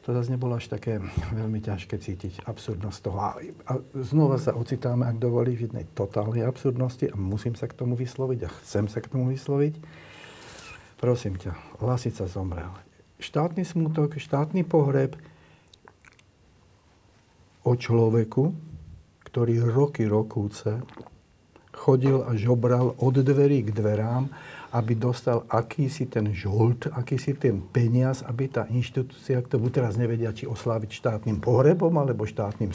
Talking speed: 130 wpm